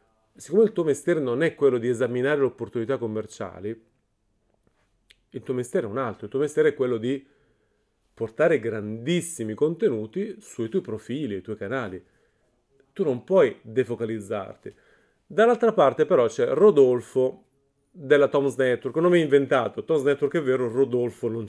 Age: 30-49